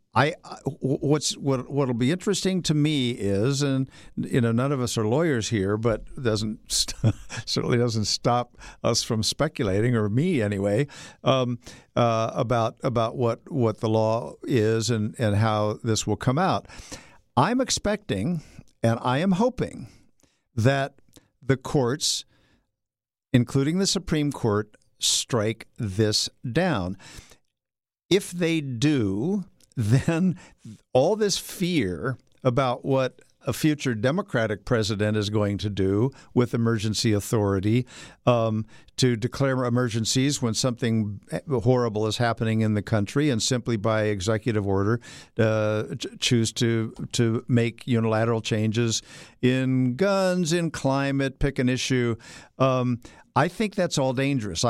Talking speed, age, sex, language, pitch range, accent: 130 wpm, 60-79, male, English, 110-140 Hz, American